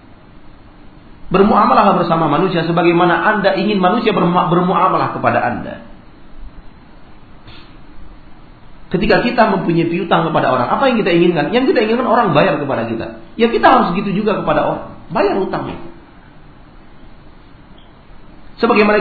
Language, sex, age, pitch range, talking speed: Malay, male, 40-59, 140-195 Hz, 115 wpm